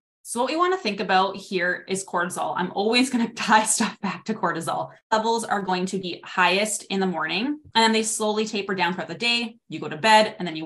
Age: 20-39